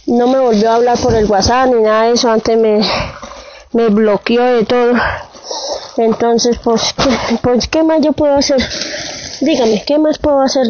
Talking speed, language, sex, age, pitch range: 180 wpm, Spanish, female, 20-39, 220-255 Hz